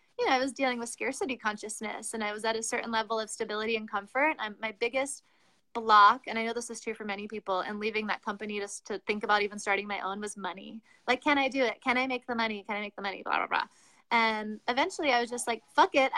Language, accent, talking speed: English, American, 265 wpm